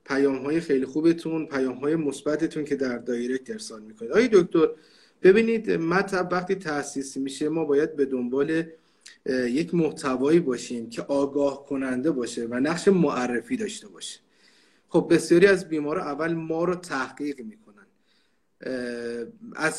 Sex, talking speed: male, 135 wpm